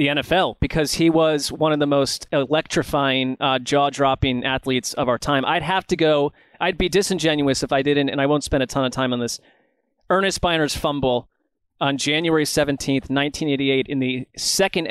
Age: 30-49